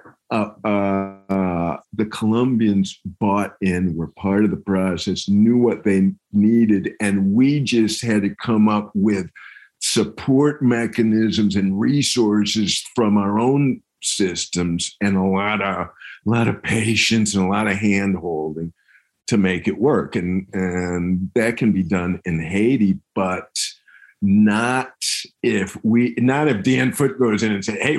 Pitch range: 95-120 Hz